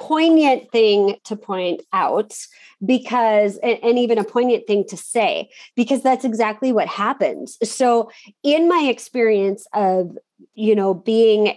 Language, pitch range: English, 205-255 Hz